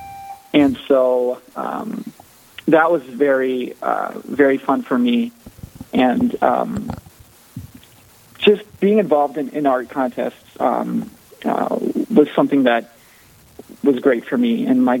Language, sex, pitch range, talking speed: English, male, 120-155 Hz, 125 wpm